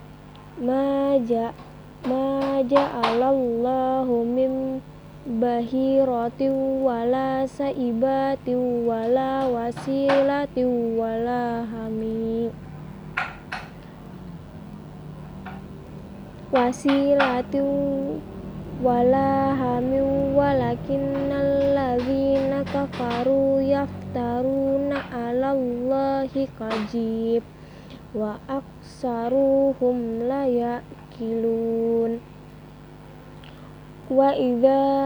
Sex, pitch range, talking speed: female, 245-275 Hz, 45 wpm